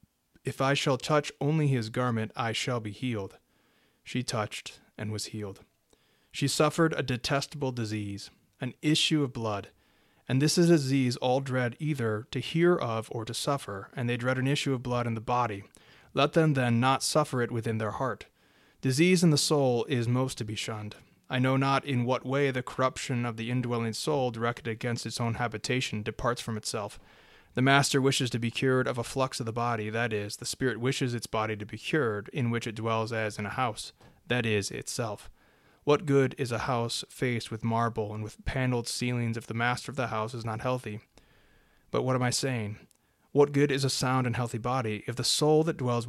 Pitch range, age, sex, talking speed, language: 110-135 Hz, 30-49, male, 205 wpm, English